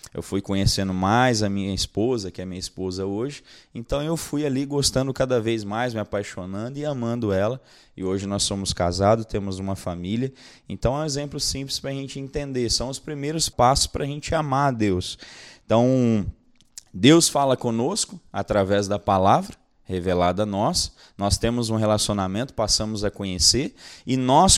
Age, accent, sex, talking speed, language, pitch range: 20-39, Brazilian, male, 175 wpm, Portuguese, 100-135 Hz